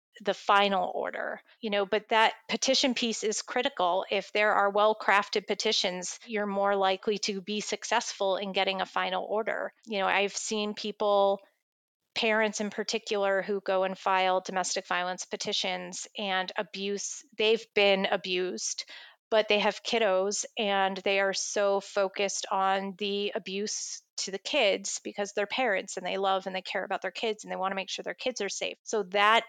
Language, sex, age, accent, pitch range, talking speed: English, female, 30-49, American, 195-220 Hz, 175 wpm